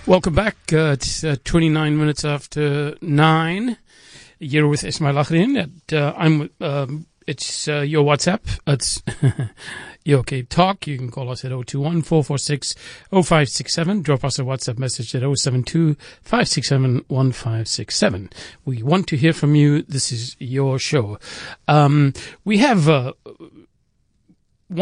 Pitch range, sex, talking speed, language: 125-155 Hz, male, 170 wpm, English